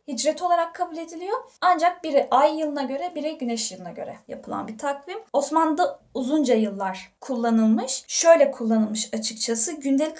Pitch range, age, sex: 220-290 Hz, 10-29, female